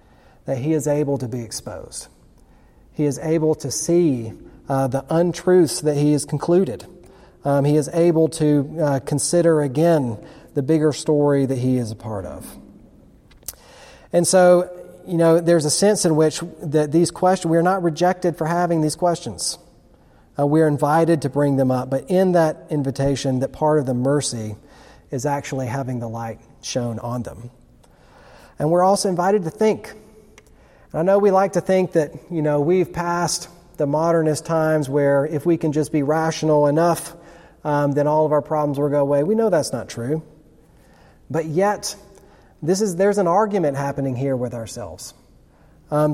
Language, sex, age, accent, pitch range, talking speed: English, male, 40-59, American, 140-170 Hz, 175 wpm